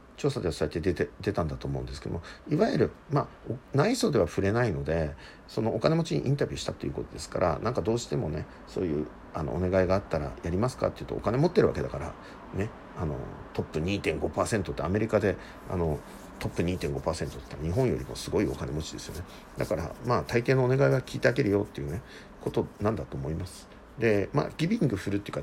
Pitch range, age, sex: 80-130 Hz, 50-69, male